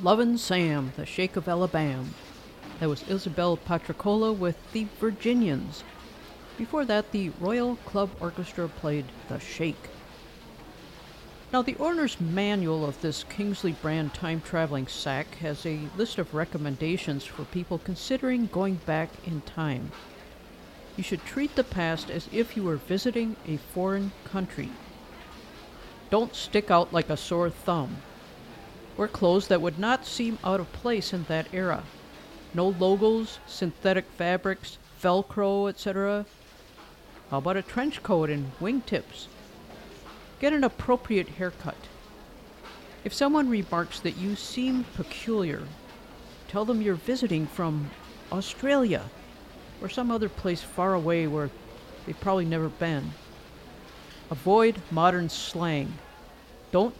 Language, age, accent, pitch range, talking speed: English, 50-69, American, 165-215 Hz, 125 wpm